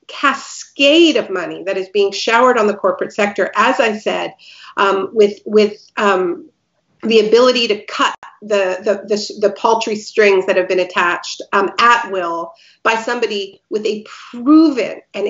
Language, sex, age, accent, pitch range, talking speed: English, female, 50-69, American, 205-255 Hz, 160 wpm